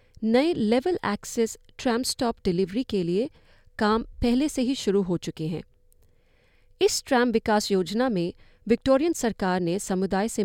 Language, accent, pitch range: Hindi, native, 185-260 Hz